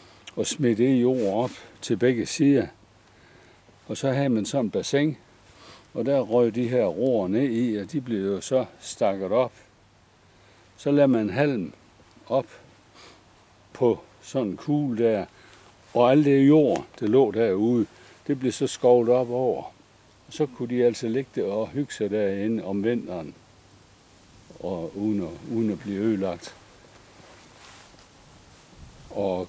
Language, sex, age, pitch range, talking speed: Danish, male, 60-79, 100-130 Hz, 150 wpm